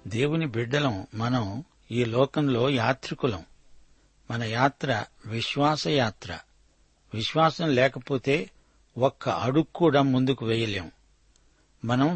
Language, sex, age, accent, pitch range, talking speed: Telugu, male, 60-79, native, 120-145 Hz, 80 wpm